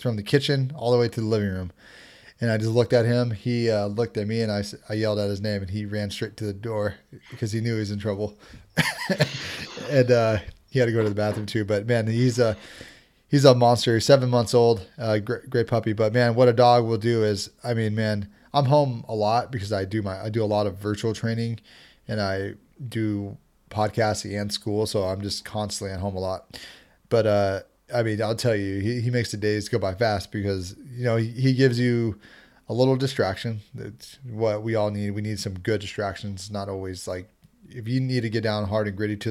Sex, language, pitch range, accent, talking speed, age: male, English, 105-120 Hz, American, 235 wpm, 30-49